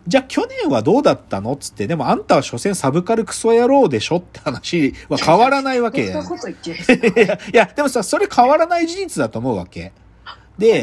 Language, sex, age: Japanese, male, 40-59